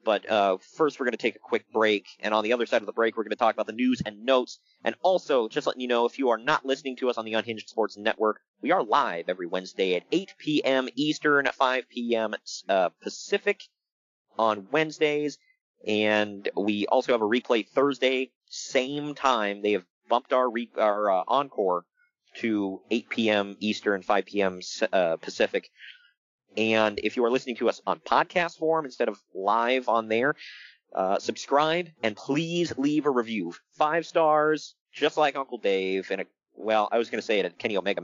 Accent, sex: American, male